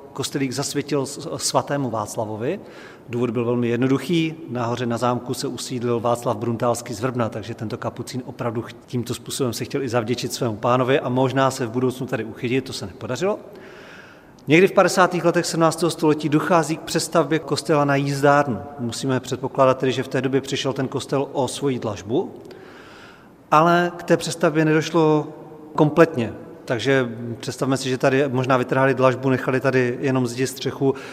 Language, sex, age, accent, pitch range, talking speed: Czech, male, 40-59, native, 125-160 Hz, 160 wpm